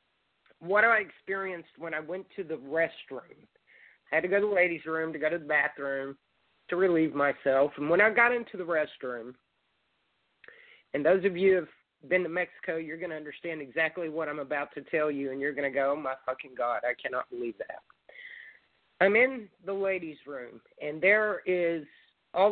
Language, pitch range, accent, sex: English, 145-190 Hz, American, male